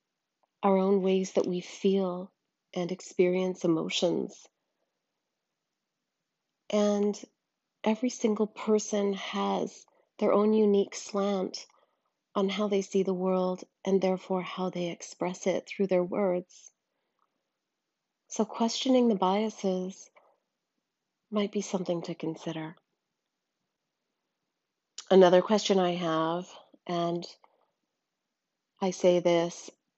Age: 40-59